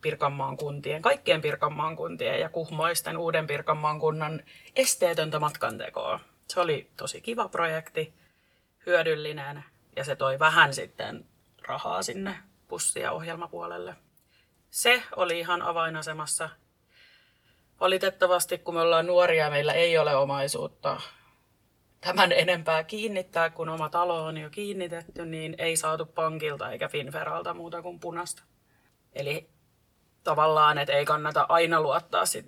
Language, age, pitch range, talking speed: Finnish, 30-49, 150-170 Hz, 120 wpm